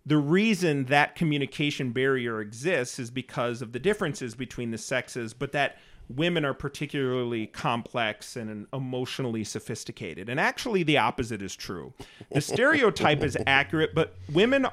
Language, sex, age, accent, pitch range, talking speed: English, male, 40-59, American, 115-150 Hz, 145 wpm